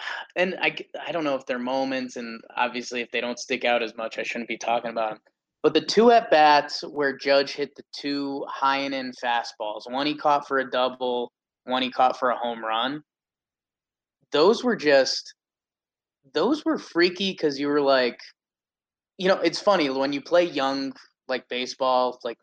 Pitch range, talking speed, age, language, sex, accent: 125-160 Hz, 190 wpm, 20-39, English, male, American